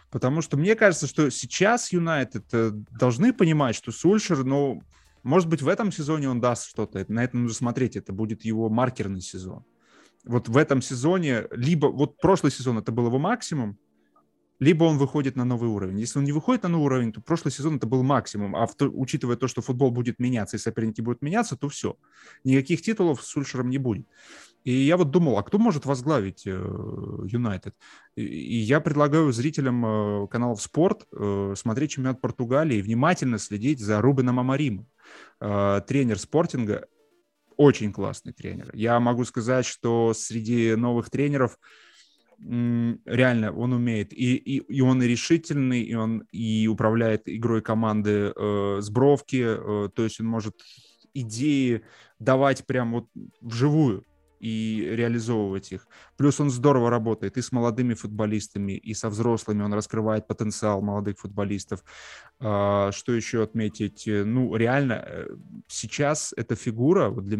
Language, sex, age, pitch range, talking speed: Russian, male, 20-39, 110-140 Hz, 150 wpm